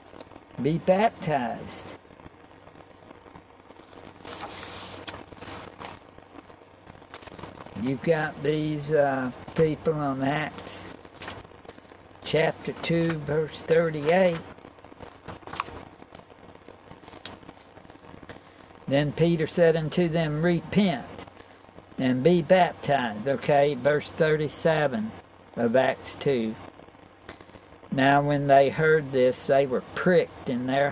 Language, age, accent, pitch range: English, 60-79, American, 135-175 Hz